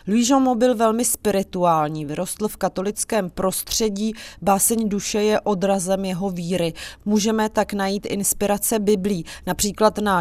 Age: 30-49